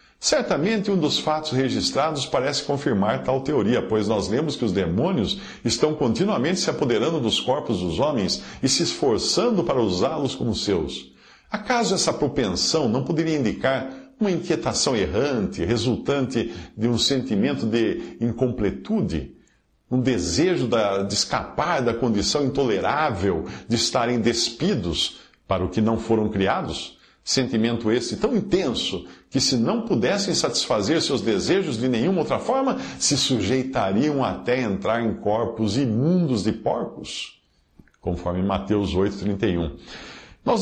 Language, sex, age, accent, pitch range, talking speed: Portuguese, male, 50-69, Brazilian, 105-150 Hz, 130 wpm